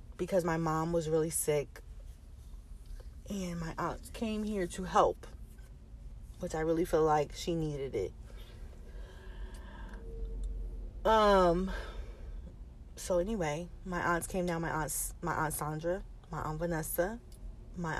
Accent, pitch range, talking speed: American, 150-180 Hz, 125 wpm